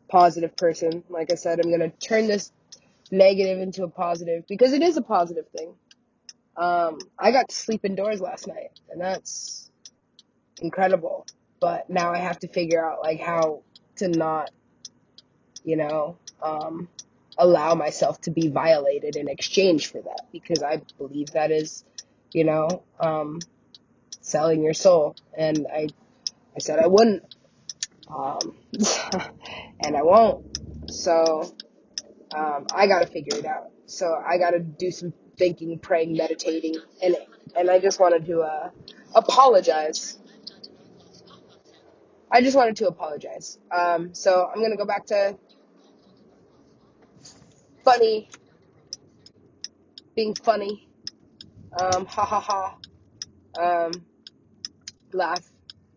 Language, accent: English, American